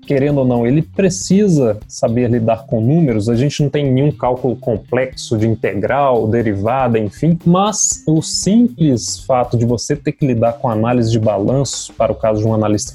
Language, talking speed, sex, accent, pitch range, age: Portuguese, 180 wpm, male, Brazilian, 120-170 Hz, 20-39